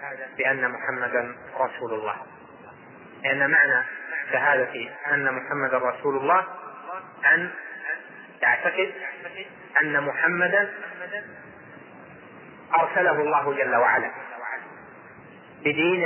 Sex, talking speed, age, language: male, 80 wpm, 30-49, Arabic